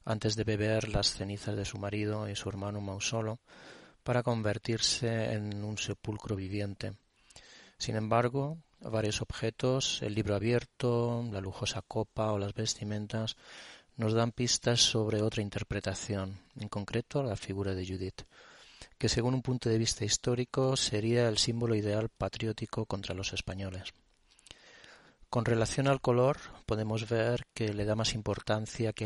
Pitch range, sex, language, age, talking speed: 100-115 Hz, male, Spanish, 30-49, 145 wpm